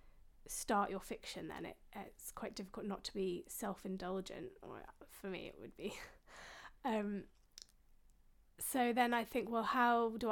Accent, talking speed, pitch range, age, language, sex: British, 150 wpm, 190-225 Hz, 20-39, English, female